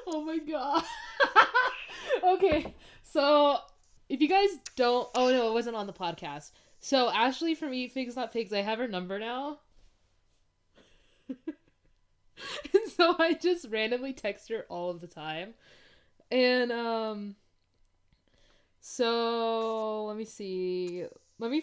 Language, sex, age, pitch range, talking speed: English, female, 20-39, 185-265 Hz, 125 wpm